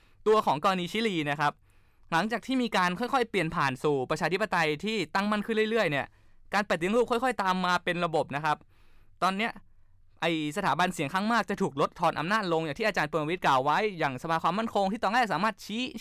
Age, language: 20-39, Thai